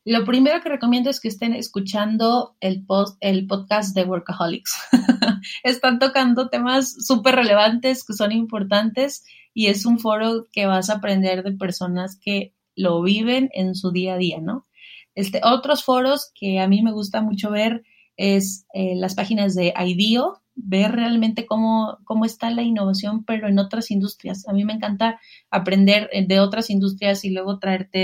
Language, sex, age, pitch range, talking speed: Spanish, female, 30-49, 195-230 Hz, 170 wpm